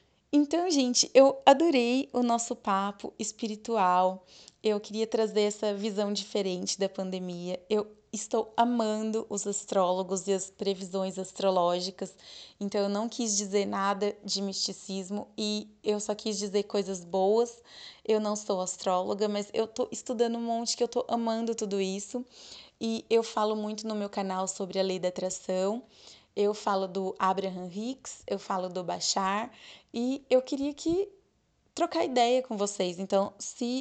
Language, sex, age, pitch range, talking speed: Portuguese, female, 20-39, 195-240 Hz, 155 wpm